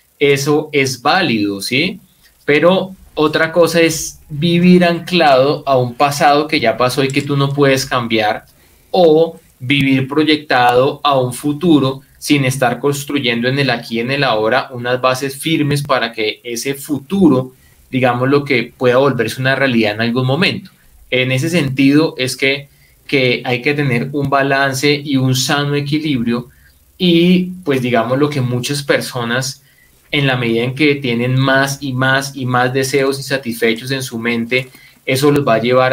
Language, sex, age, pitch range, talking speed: Spanish, male, 20-39, 125-145 Hz, 160 wpm